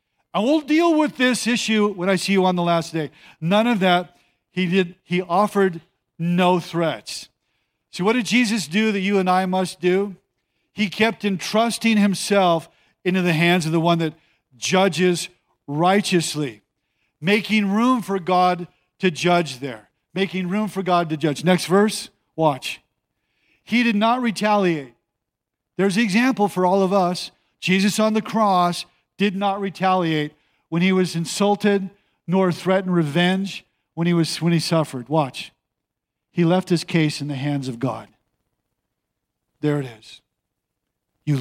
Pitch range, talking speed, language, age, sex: 150-195 Hz, 155 wpm, English, 50-69, male